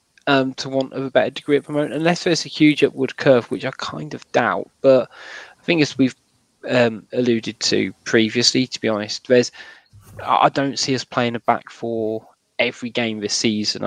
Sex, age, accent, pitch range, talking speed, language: male, 20-39, British, 115-145 Hz, 200 wpm, English